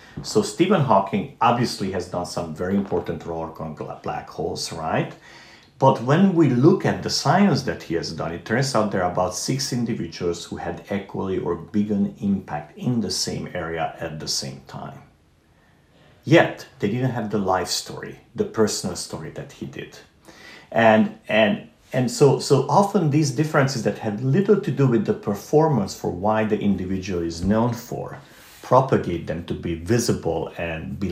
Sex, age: male, 50-69